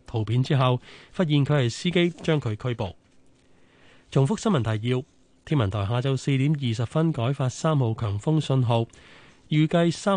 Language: Chinese